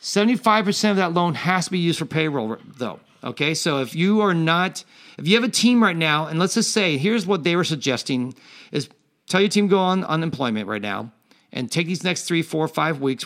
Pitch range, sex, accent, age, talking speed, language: 145-180 Hz, male, American, 40-59, 230 wpm, English